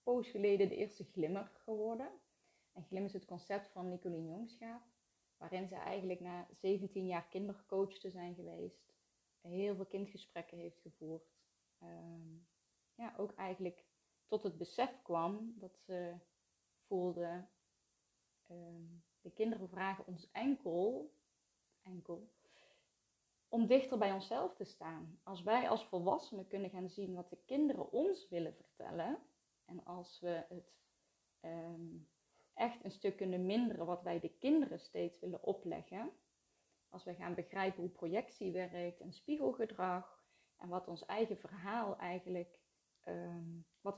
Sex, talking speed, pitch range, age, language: female, 135 wpm, 175-210 Hz, 20-39, Dutch